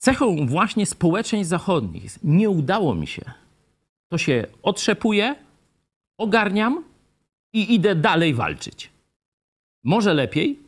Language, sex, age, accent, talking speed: Polish, male, 50-69, native, 100 wpm